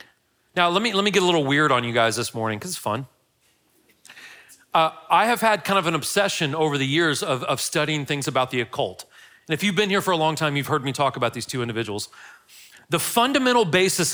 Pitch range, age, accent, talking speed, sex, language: 135-185 Hz, 40-59, American, 235 wpm, male, English